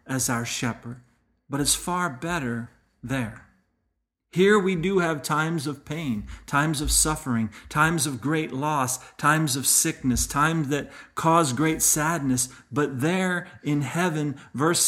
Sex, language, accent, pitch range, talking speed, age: male, English, American, 120-160 Hz, 140 wpm, 40-59